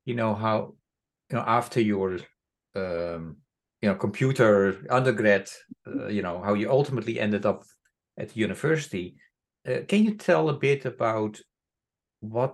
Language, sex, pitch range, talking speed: English, male, 95-120 Hz, 150 wpm